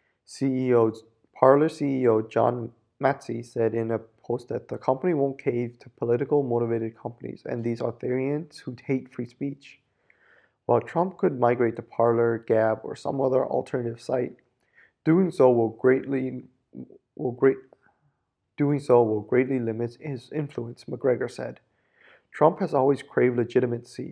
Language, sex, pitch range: Japanese, male, 115-135 Hz